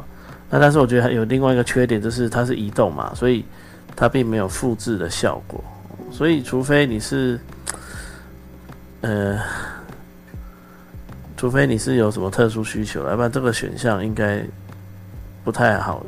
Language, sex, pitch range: Chinese, male, 95-120 Hz